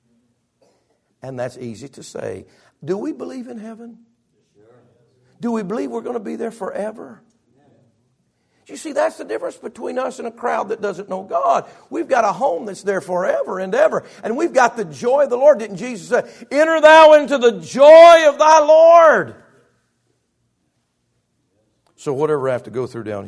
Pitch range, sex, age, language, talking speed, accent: 115-175 Hz, male, 50-69, English, 180 wpm, American